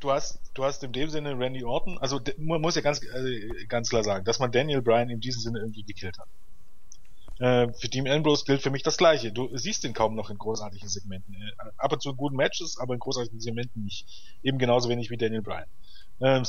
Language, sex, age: German, male, 30-49